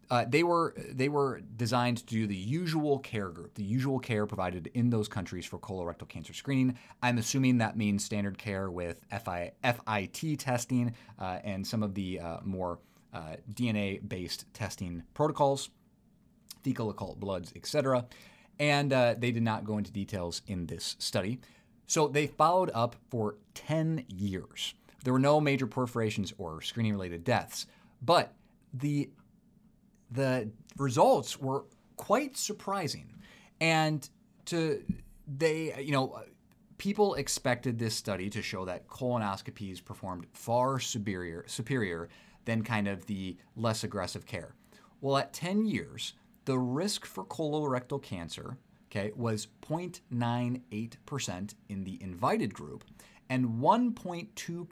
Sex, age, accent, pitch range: male, 30-49, American, 100-145 Hz